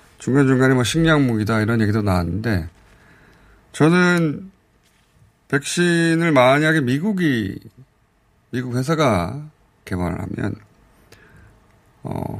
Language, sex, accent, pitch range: Korean, male, native, 100-130 Hz